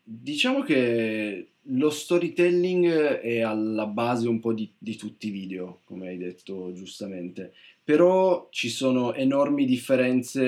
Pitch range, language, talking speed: 105-125 Hz, Italian, 130 wpm